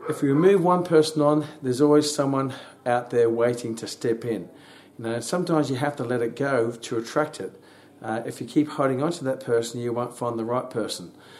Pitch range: 120-160 Hz